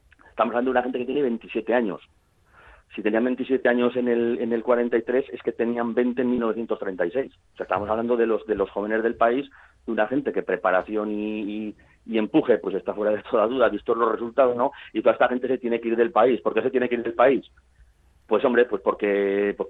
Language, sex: Spanish, male